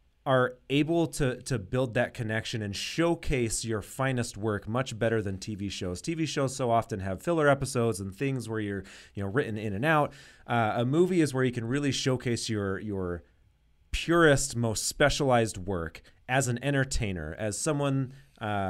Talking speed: 175 wpm